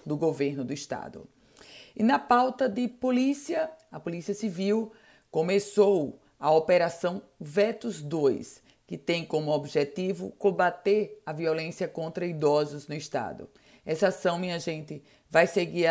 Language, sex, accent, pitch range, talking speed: Portuguese, female, Brazilian, 155-210 Hz, 130 wpm